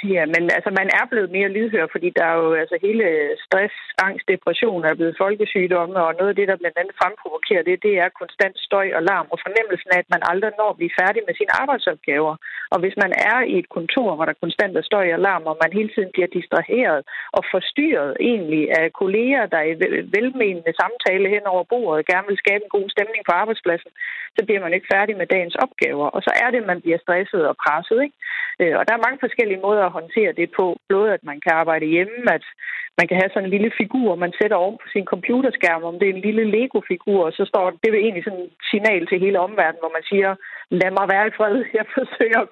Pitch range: 175-220 Hz